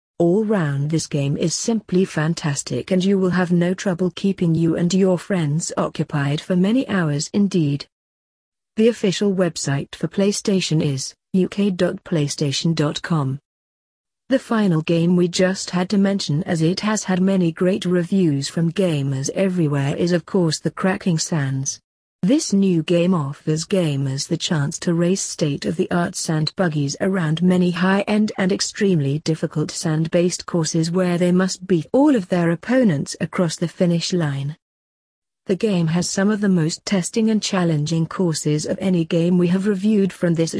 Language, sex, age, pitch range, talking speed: English, female, 50-69, 160-190 Hz, 155 wpm